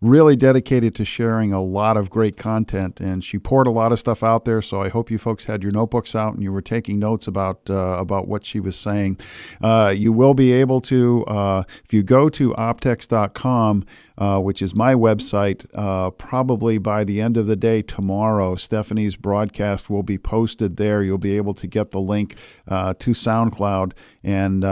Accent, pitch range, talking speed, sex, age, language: American, 100-115 Hz, 200 wpm, male, 50-69, English